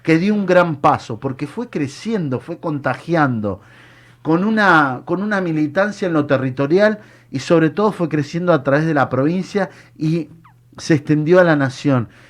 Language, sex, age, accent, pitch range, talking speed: Spanish, male, 50-69, Argentinian, 130-165 Hz, 160 wpm